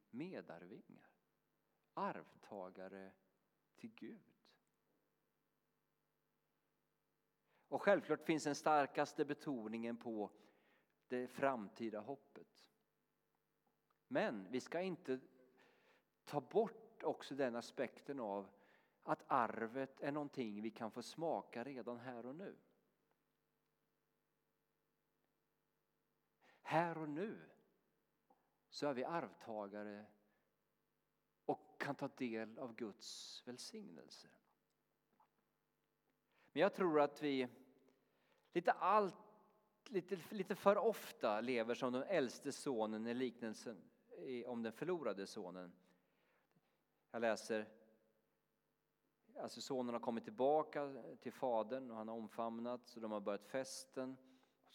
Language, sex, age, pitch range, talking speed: Swedish, male, 40-59, 110-150 Hz, 100 wpm